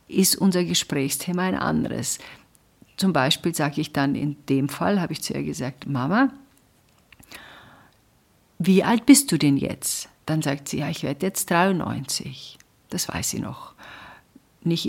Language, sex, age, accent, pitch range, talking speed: German, female, 50-69, German, 140-190 Hz, 155 wpm